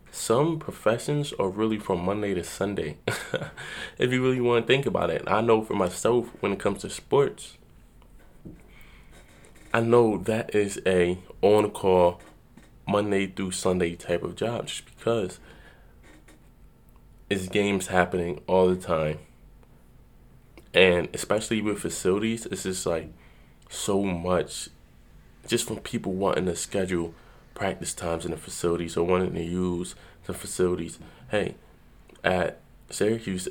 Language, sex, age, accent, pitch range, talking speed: English, male, 20-39, American, 85-100 Hz, 135 wpm